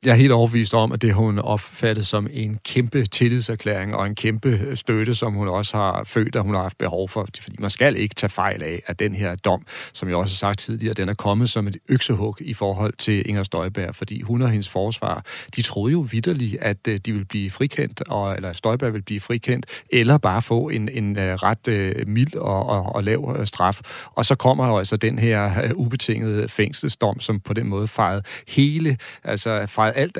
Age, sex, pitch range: 40-59, male, 100-125 Hz